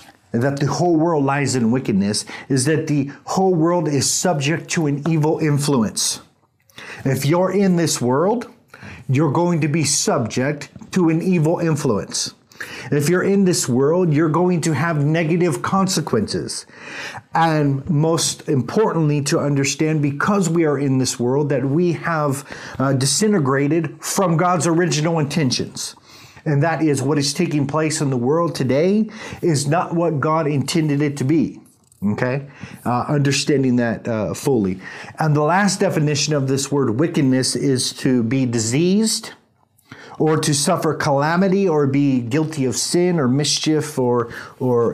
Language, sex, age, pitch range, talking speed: English, male, 50-69, 135-170 Hz, 150 wpm